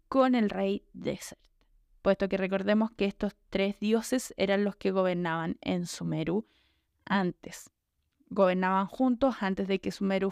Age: 20-39